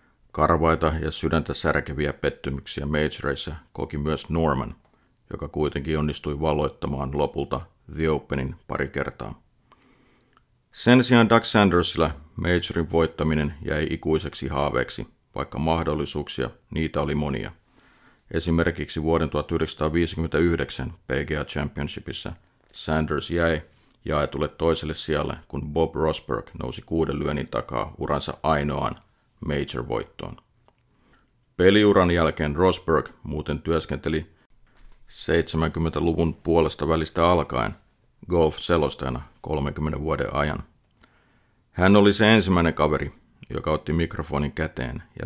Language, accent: Finnish, native